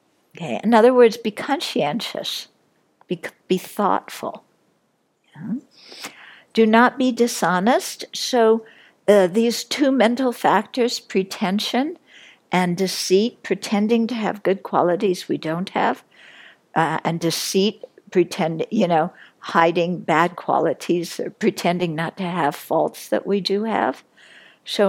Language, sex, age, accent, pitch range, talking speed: English, female, 60-79, American, 175-225 Hz, 125 wpm